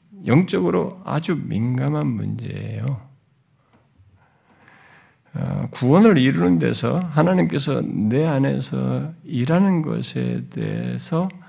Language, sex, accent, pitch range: Korean, male, native, 115-160 Hz